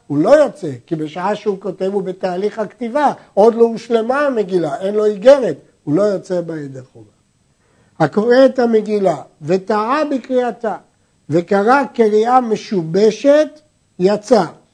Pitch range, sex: 185-240 Hz, male